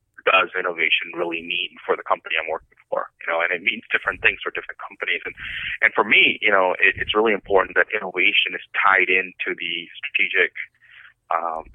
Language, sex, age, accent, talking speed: English, male, 30-49, American, 195 wpm